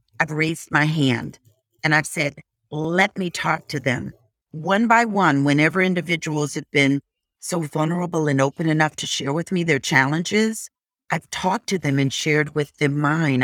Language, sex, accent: English, female, American